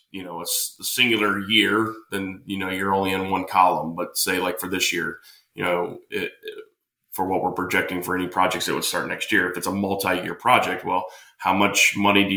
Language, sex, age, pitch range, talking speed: English, male, 20-39, 90-105 Hz, 210 wpm